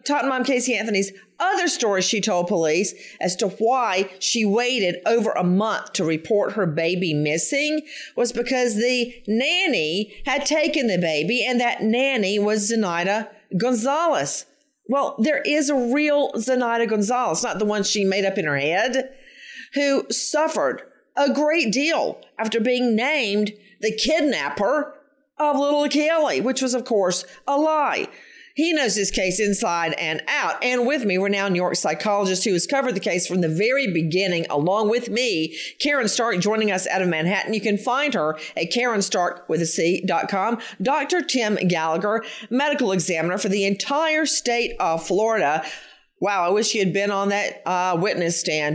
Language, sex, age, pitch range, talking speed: English, female, 40-59, 185-265 Hz, 170 wpm